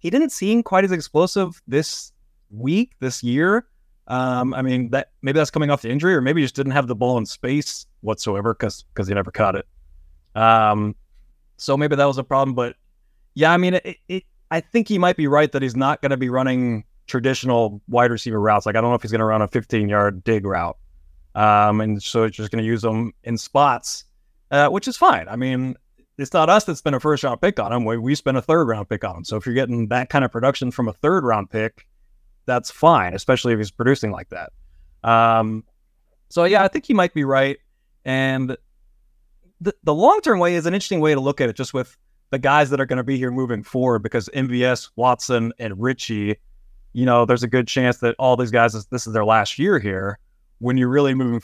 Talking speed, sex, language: 225 wpm, male, English